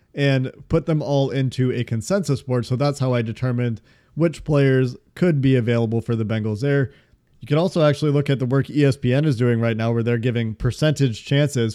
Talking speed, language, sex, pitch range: 205 wpm, English, male, 120-140 Hz